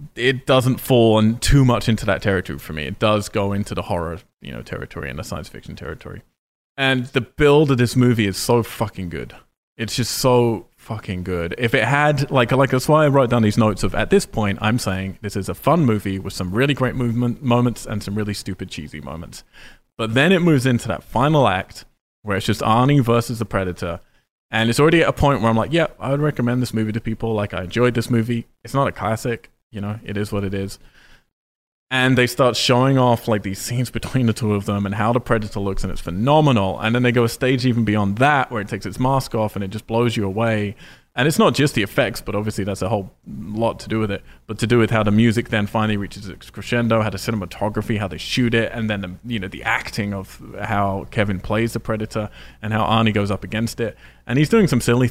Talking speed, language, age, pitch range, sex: 245 wpm, English, 20-39, 100-125 Hz, male